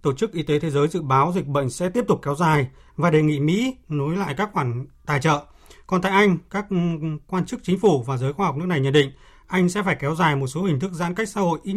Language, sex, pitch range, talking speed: Vietnamese, male, 145-185 Hz, 280 wpm